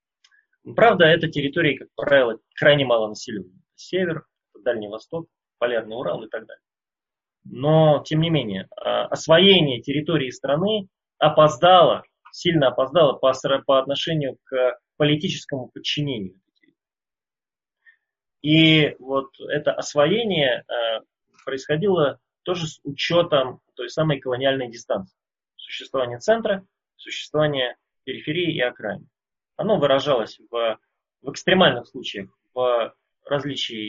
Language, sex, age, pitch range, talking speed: Russian, male, 20-39, 120-155 Hz, 100 wpm